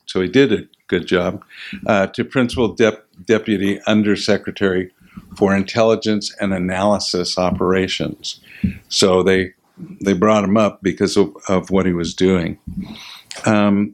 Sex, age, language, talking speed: male, 60-79, English, 135 wpm